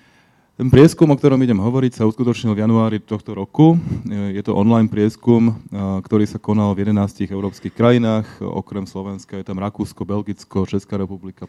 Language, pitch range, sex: Slovak, 95-105 Hz, male